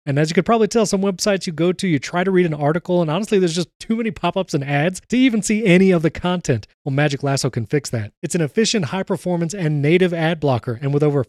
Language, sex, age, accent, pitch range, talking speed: English, male, 30-49, American, 145-190 Hz, 265 wpm